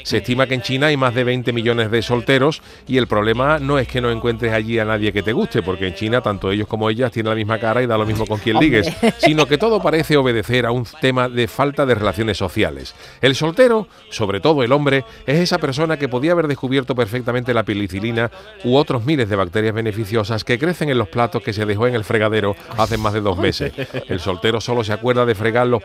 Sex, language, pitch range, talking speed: male, Spanish, 110-140 Hz, 240 wpm